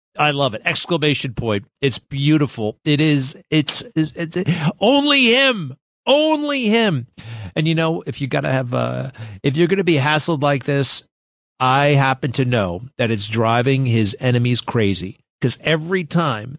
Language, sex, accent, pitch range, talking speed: English, male, American, 115-160 Hz, 170 wpm